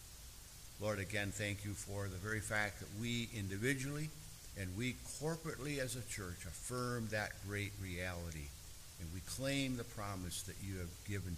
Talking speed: 160 wpm